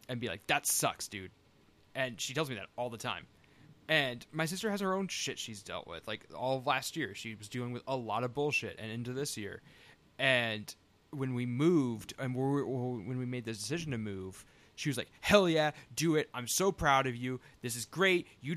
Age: 20-39